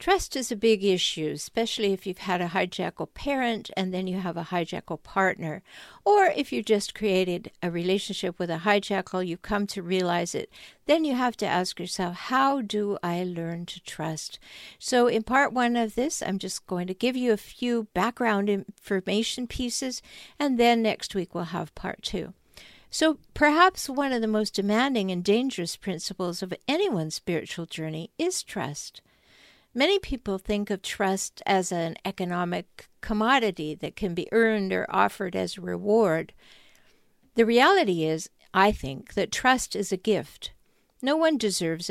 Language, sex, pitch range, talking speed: English, female, 180-235 Hz, 170 wpm